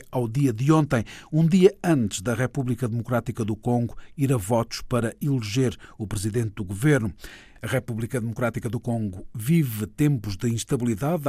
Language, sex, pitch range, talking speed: Portuguese, male, 115-145 Hz, 160 wpm